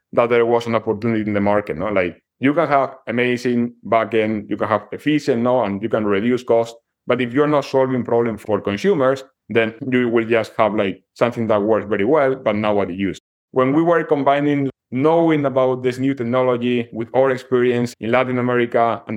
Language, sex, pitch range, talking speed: English, male, 115-135 Hz, 200 wpm